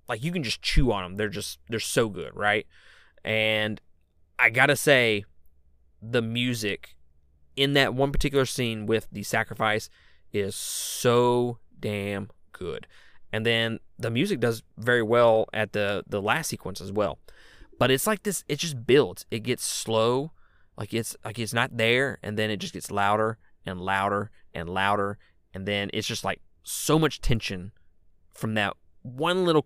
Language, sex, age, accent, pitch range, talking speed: English, male, 20-39, American, 95-120 Hz, 170 wpm